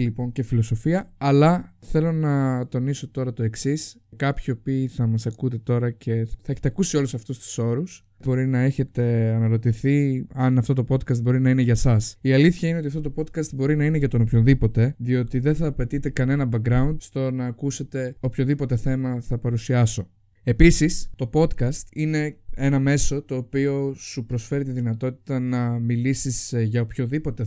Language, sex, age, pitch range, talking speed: Greek, male, 20-39, 120-145 Hz, 175 wpm